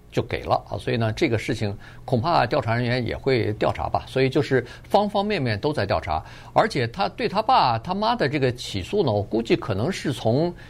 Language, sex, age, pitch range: Chinese, male, 50-69, 110-145 Hz